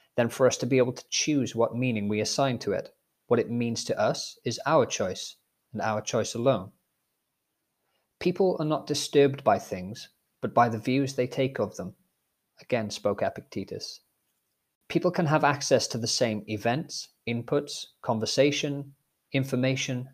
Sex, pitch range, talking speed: male, 115-140 Hz, 160 wpm